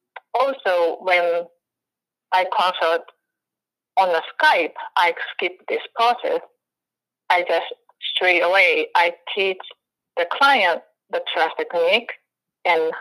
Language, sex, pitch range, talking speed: English, female, 170-280 Hz, 100 wpm